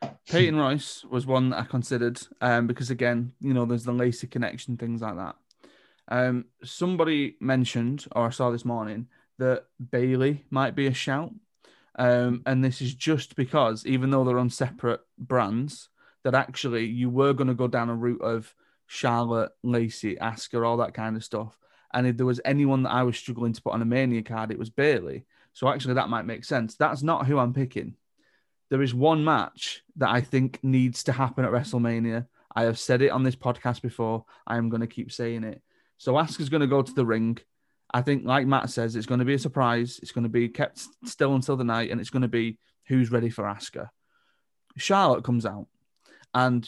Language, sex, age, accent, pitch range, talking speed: English, male, 30-49, British, 120-135 Hz, 205 wpm